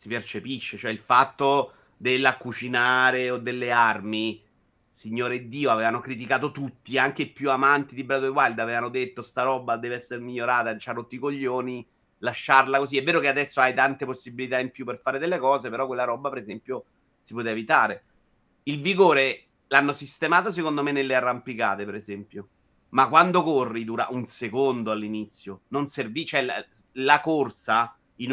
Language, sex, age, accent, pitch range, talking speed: Italian, male, 30-49, native, 115-135 Hz, 170 wpm